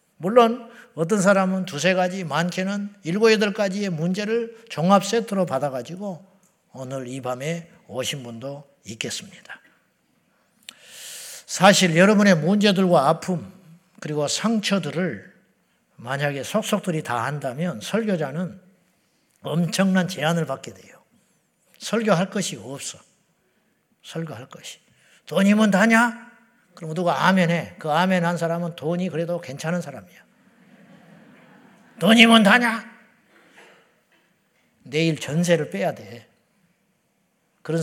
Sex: male